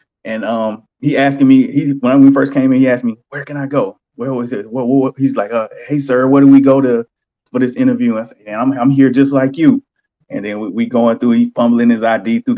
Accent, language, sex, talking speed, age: American, English, male, 270 wpm, 30-49